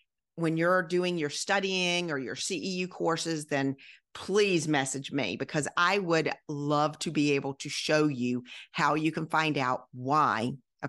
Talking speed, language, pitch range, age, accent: 165 wpm, English, 140-175 Hz, 40-59, American